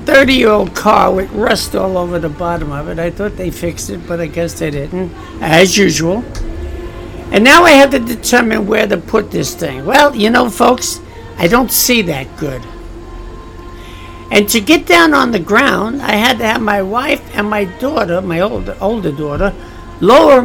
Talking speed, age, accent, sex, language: 190 wpm, 60-79, American, male, English